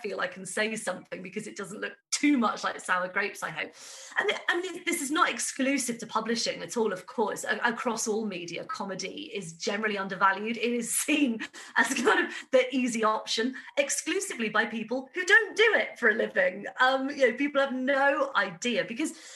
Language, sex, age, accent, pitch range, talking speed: English, female, 30-49, British, 215-275 Hz, 205 wpm